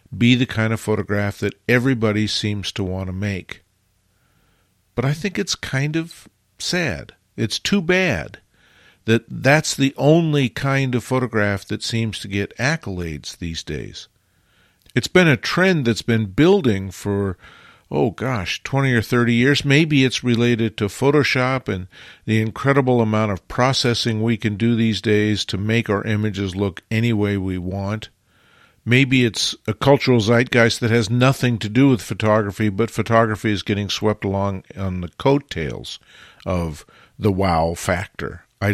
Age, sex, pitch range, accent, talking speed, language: 50-69, male, 100-130 Hz, American, 155 wpm, English